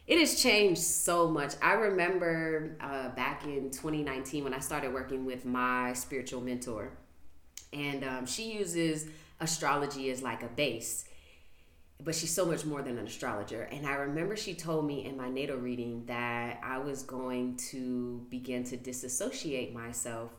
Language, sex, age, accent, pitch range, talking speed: English, female, 20-39, American, 125-170 Hz, 160 wpm